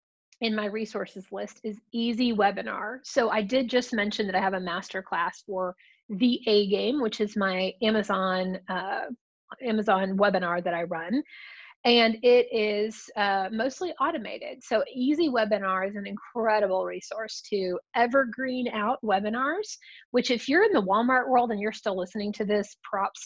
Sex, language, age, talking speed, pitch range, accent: female, English, 30-49, 155 wpm, 195-235 Hz, American